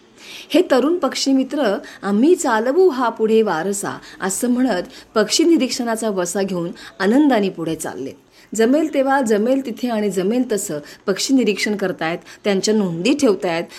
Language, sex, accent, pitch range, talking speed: Marathi, female, native, 200-280 Hz, 135 wpm